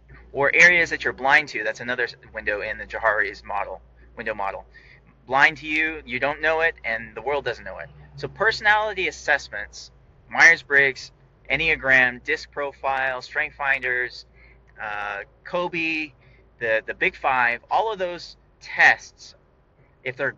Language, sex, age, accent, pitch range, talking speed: English, male, 30-49, American, 125-150 Hz, 145 wpm